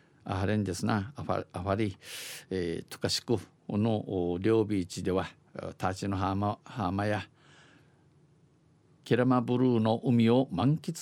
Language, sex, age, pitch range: Japanese, male, 50-69, 95-125 Hz